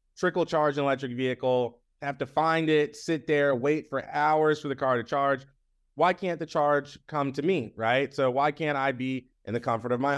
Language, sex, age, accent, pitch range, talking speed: English, male, 30-49, American, 125-145 Hz, 220 wpm